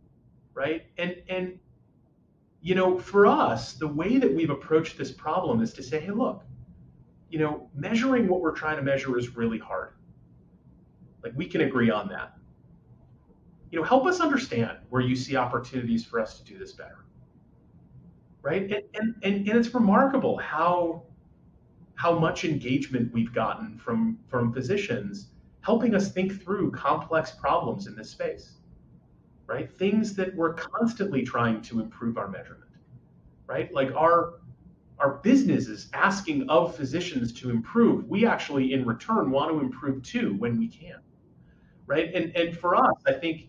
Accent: American